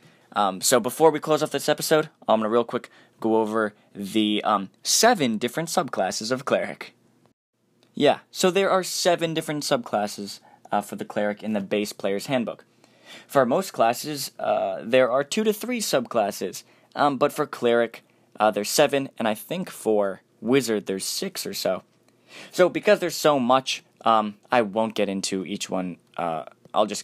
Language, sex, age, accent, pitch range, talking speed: English, male, 10-29, American, 105-150 Hz, 175 wpm